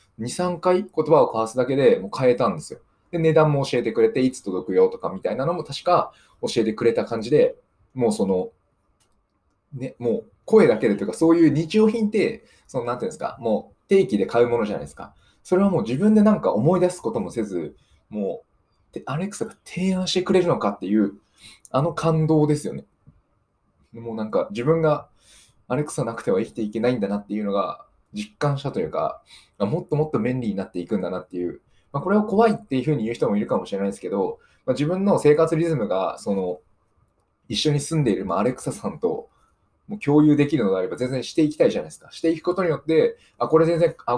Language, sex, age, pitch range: Japanese, male, 20-39, 110-180 Hz